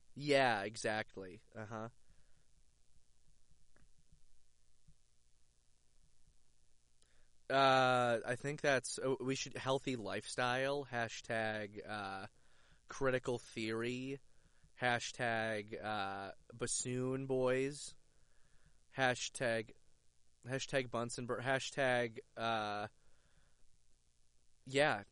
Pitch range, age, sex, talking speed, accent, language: 100-130 Hz, 20-39, male, 60 wpm, American, English